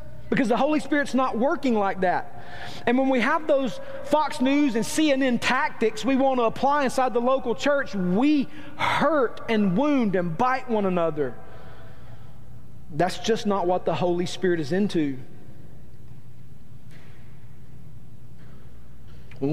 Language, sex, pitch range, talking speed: English, male, 175-230 Hz, 135 wpm